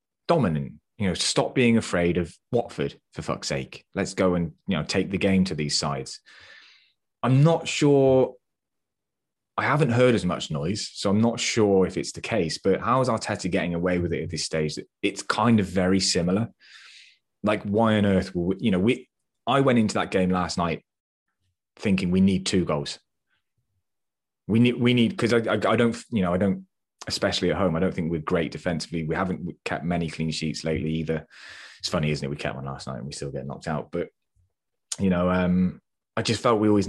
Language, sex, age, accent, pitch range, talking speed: English, male, 20-39, British, 85-110 Hz, 210 wpm